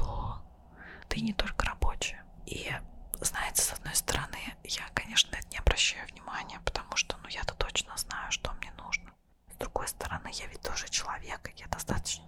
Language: Russian